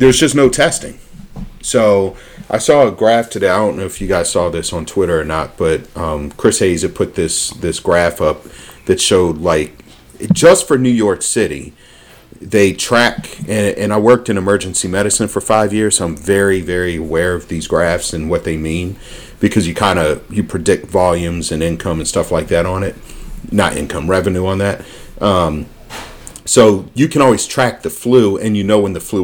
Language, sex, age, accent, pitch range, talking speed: English, male, 40-59, American, 85-105 Hz, 200 wpm